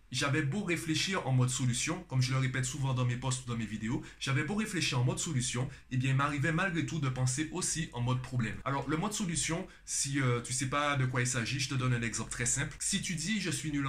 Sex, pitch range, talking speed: male, 125-160 Hz, 270 wpm